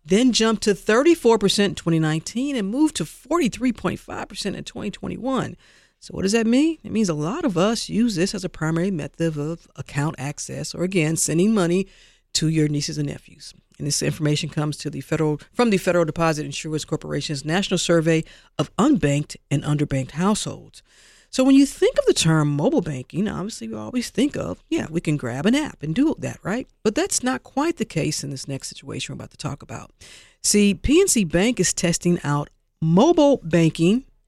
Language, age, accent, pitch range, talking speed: English, 50-69, American, 150-215 Hz, 185 wpm